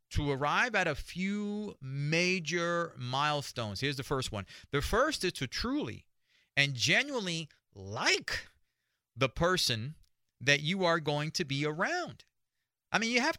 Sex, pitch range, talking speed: male, 130-180 Hz, 145 wpm